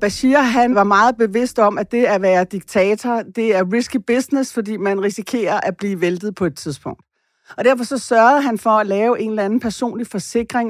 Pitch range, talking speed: 190-235 Hz, 205 wpm